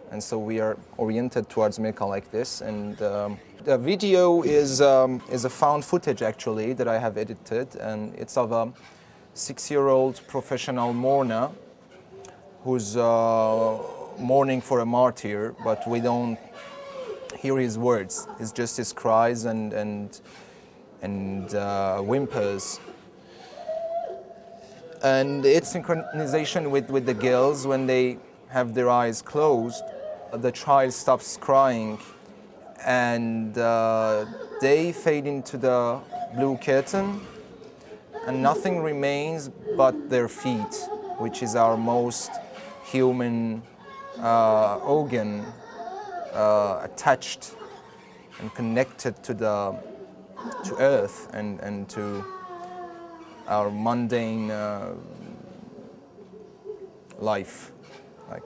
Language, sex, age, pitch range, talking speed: German, male, 30-49, 110-150 Hz, 110 wpm